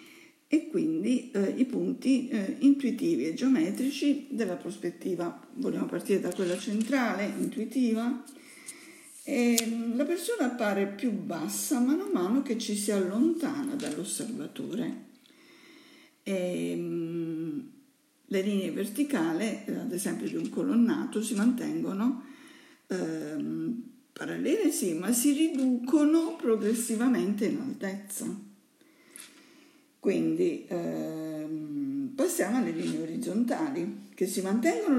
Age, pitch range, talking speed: 50-69, 225-305 Hz, 105 wpm